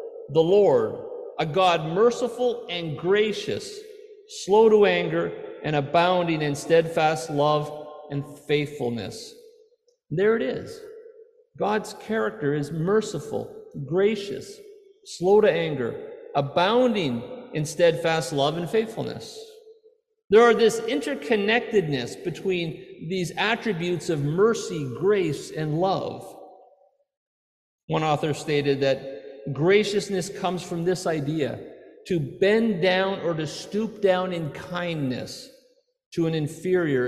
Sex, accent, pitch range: male, American, 150-250 Hz